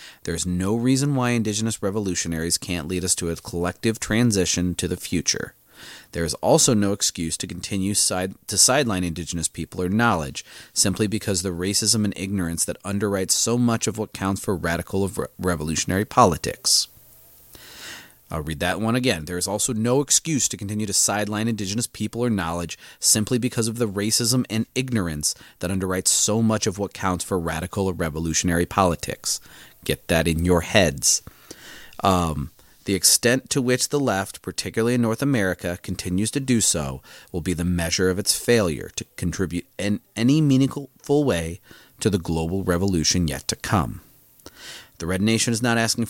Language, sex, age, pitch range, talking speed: English, male, 30-49, 90-115 Hz, 175 wpm